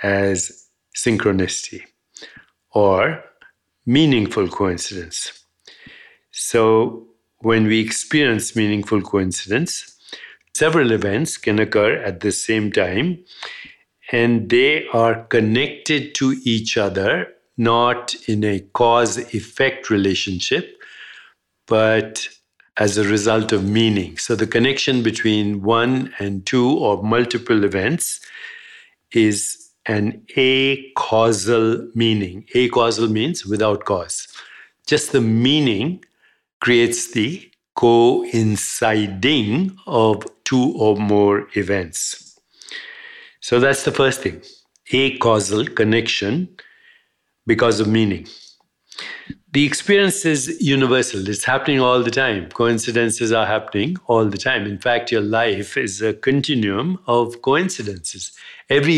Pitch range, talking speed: 105-135 Hz, 105 wpm